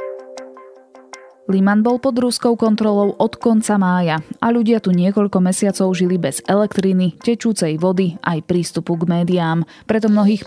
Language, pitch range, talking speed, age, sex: Slovak, 170-210 Hz, 140 wpm, 20-39, female